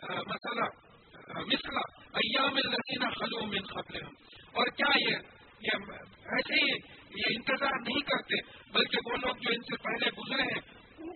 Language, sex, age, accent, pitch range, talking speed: English, male, 50-69, Indian, 220-270 Hz, 145 wpm